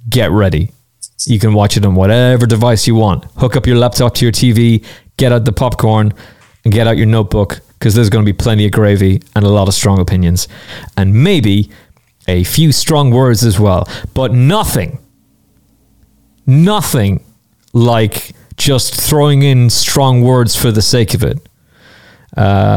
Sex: male